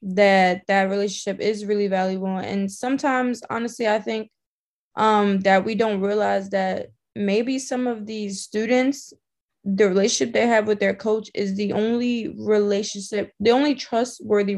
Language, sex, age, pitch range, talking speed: English, female, 20-39, 195-215 Hz, 150 wpm